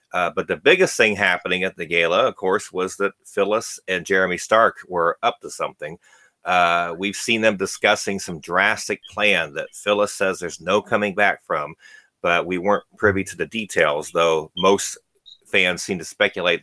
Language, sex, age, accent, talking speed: English, male, 40-59, American, 180 wpm